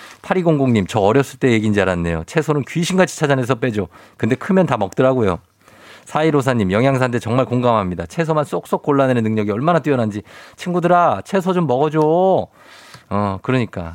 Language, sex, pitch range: Korean, male, 105-150 Hz